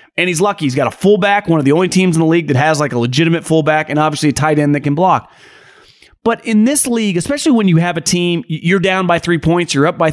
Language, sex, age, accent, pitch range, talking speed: English, male, 30-49, American, 170-240 Hz, 280 wpm